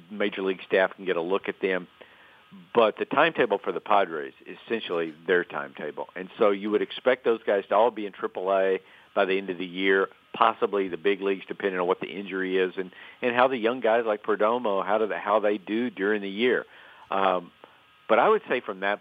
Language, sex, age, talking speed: English, male, 50-69, 225 wpm